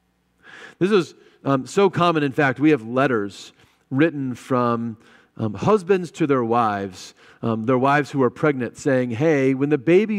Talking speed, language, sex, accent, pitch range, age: 165 wpm, English, male, American, 110-150 Hz, 40-59